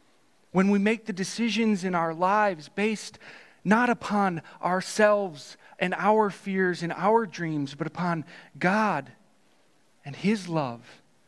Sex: male